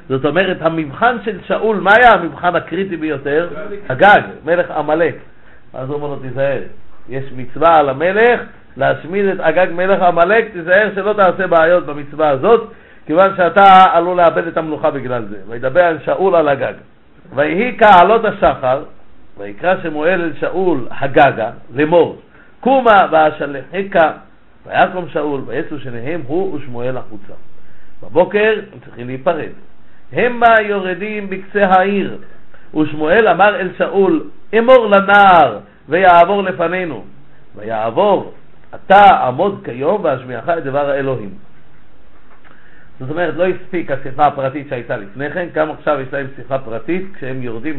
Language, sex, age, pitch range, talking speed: Hebrew, male, 50-69, 145-190 Hz, 130 wpm